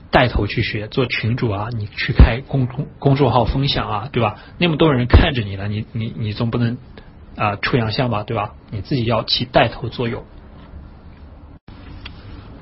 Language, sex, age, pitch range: Chinese, male, 20-39, 100-135 Hz